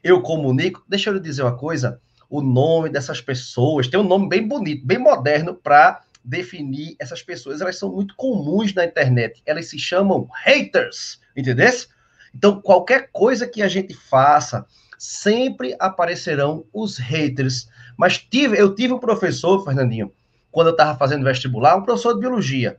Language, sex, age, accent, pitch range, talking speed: Portuguese, male, 30-49, Brazilian, 135-195 Hz, 160 wpm